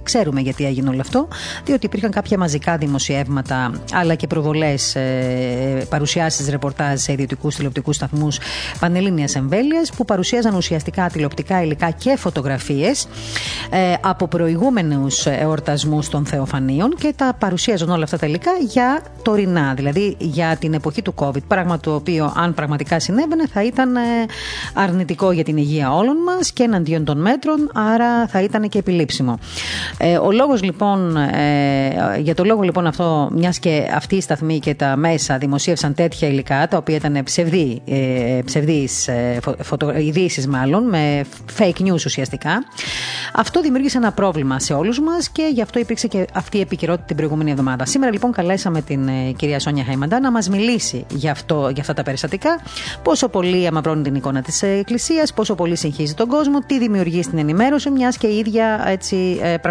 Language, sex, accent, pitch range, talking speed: Greek, female, native, 145-210 Hz, 155 wpm